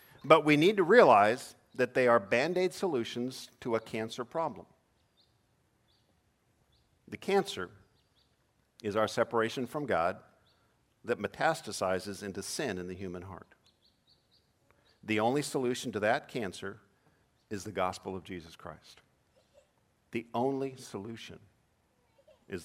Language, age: English, 50-69